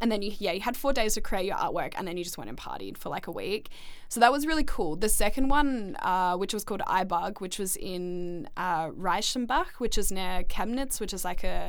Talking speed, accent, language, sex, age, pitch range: 245 wpm, Australian, English, female, 10-29, 180-205 Hz